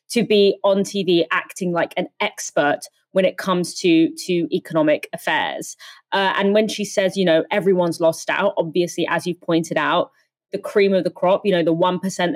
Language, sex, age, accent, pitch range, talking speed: English, female, 20-39, British, 180-220 Hz, 195 wpm